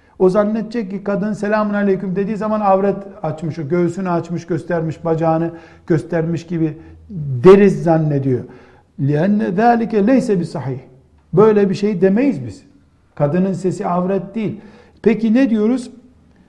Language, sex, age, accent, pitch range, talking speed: Turkish, male, 60-79, native, 155-215 Hz, 125 wpm